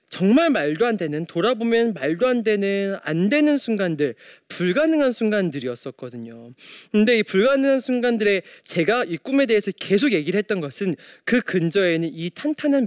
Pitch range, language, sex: 150-230 Hz, Korean, male